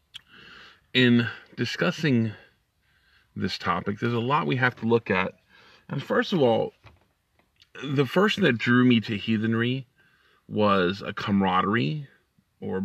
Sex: male